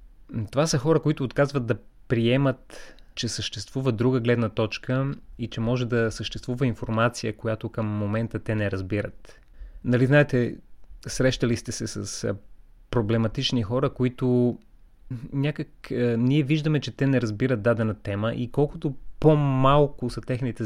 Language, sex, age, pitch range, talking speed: Bulgarian, male, 30-49, 110-130 Hz, 135 wpm